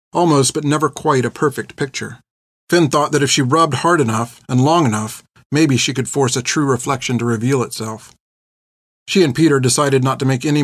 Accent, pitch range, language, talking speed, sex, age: American, 115-140 Hz, English, 205 wpm, male, 40-59